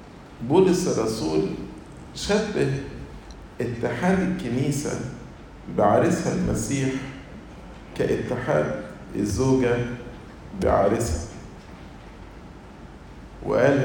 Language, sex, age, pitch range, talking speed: English, male, 50-69, 100-150 Hz, 50 wpm